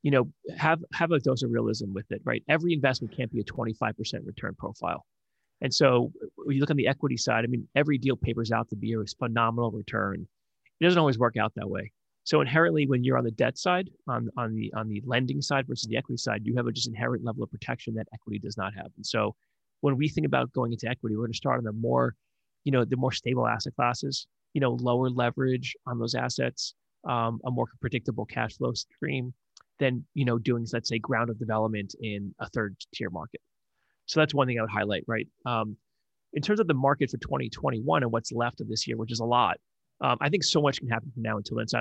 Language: English